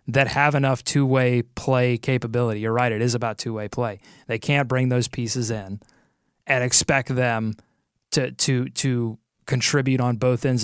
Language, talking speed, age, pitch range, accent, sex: English, 165 wpm, 30-49, 120-155 Hz, American, male